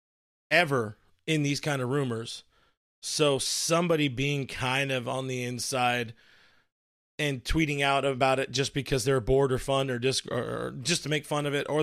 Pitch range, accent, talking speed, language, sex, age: 130-155 Hz, American, 185 wpm, English, male, 30-49